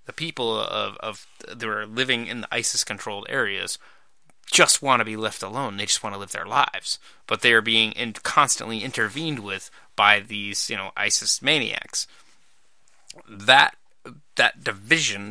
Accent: American